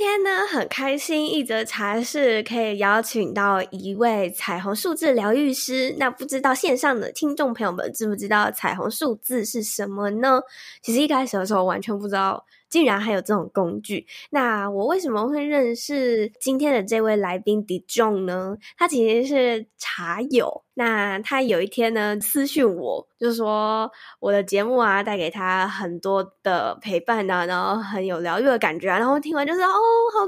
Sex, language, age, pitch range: female, Chinese, 10-29, 205-275 Hz